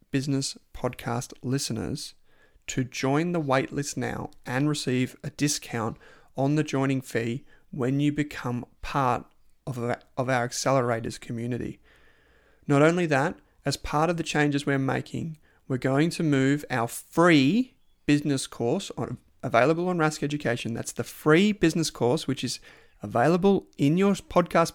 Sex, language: male, English